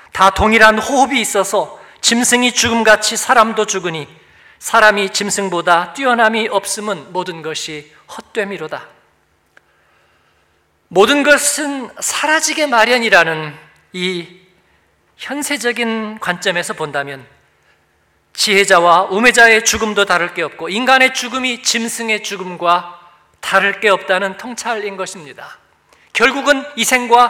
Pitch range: 185-240 Hz